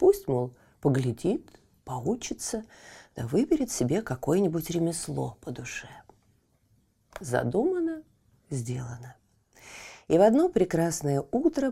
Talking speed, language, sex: 90 wpm, Russian, female